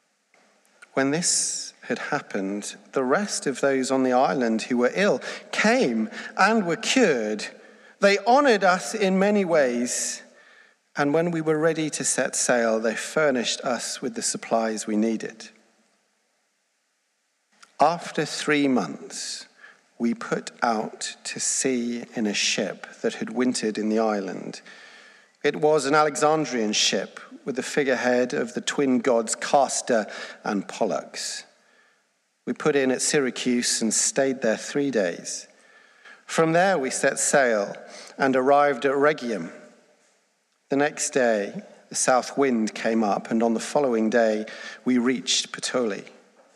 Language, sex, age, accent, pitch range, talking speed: English, male, 40-59, British, 120-165 Hz, 140 wpm